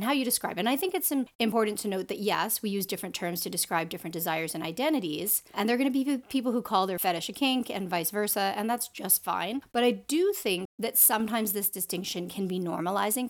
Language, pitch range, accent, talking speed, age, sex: English, 170-215 Hz, American, 240 wpm, 30-49, female